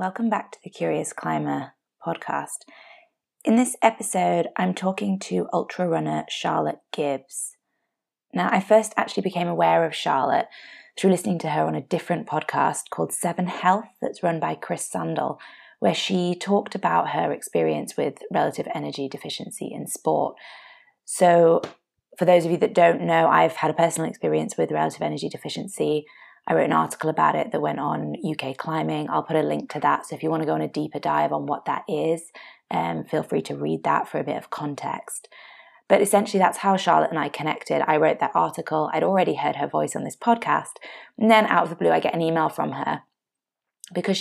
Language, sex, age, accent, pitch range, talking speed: English, female, 20-39, British, 135-195 Hz, 195 wpm